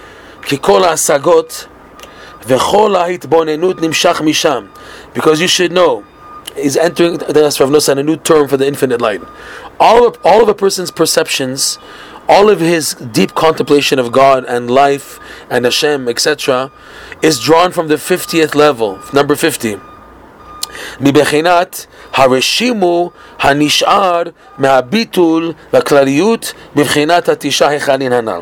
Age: 30-49